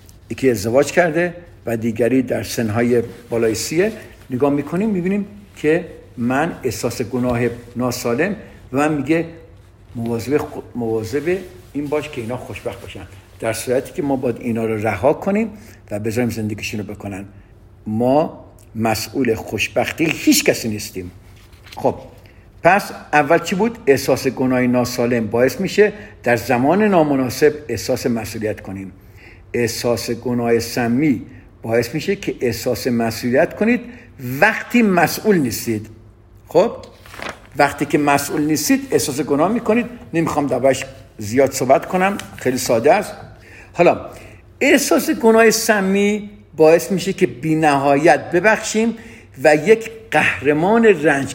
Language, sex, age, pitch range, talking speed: Persian, male, 60-79, 110-165 Hz, 125 wpm